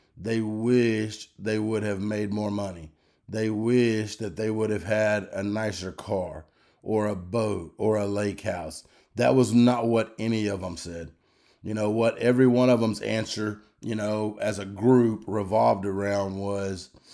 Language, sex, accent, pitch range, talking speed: English, male, American, 100-115 Hz, 170 wpm